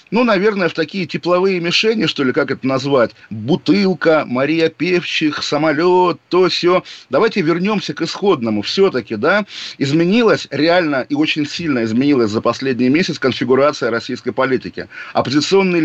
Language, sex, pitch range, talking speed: Russian, male, 130-165 Hz, 135 wpm